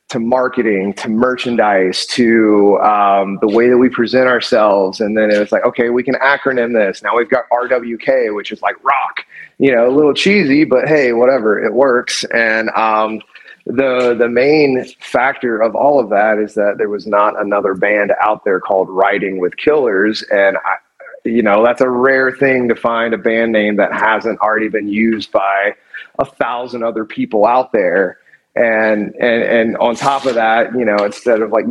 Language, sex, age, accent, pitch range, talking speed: English, male, 30-49, American, 105-125 Hz, 185 wpm